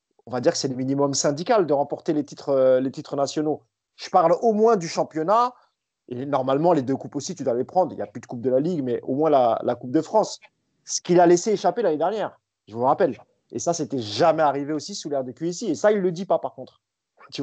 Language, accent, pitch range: French, French, 140-185 Hz